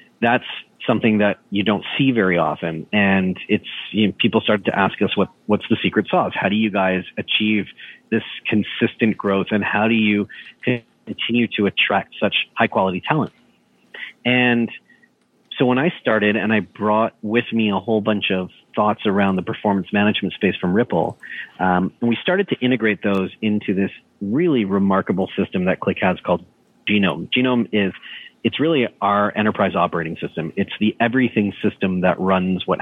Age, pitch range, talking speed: 30-49, 95-115 Hz, 175 wpm